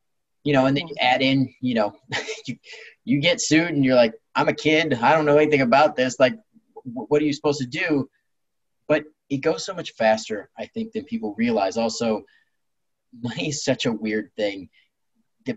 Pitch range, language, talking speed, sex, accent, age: 125-160 Hz, English, 195 wpm, male, American, 30-49